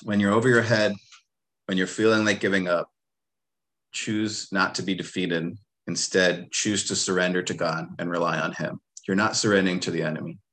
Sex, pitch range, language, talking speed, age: male, 90-105 Hz, English, 180 wpm, 30-49